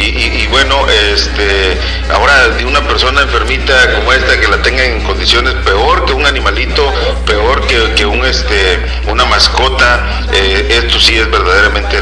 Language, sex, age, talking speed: English, male, 50-69, 170 wpm